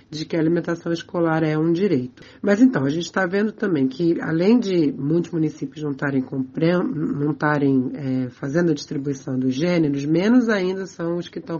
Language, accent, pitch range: Portuguese, Brazilian, 150-185 Hz